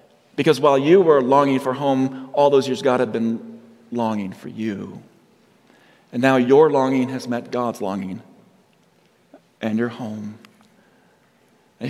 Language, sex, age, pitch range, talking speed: English, male, 40-59, 120-140 Hz, 140 wpm